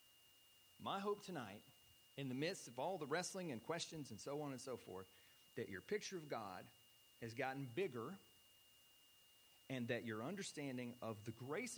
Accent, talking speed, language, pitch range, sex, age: American, 170 wpm, English, 120-185 Hz, male, 40-59